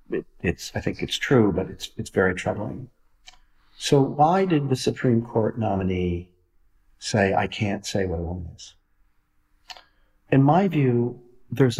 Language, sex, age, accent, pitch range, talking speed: English, male, 50-69, American, 90-120 Hz, 145 wpm